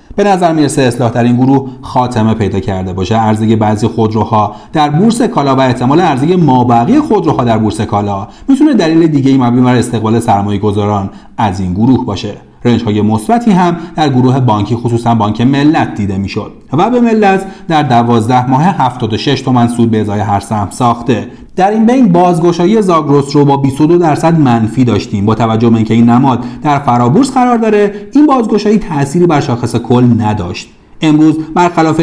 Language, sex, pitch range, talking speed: Persian, male, 115-165 Hz, 170 wpm